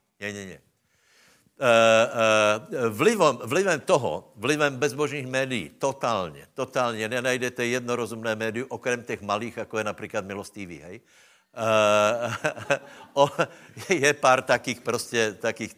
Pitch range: 105-125 Hz